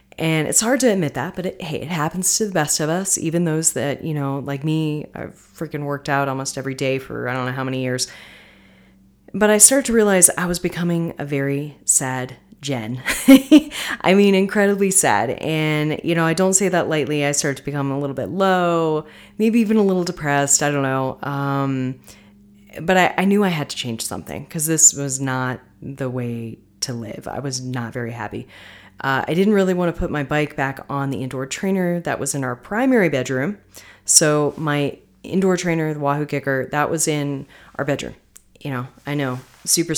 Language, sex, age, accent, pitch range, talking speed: English, female, 30-49, American, 135-175 Hz, 205 wpm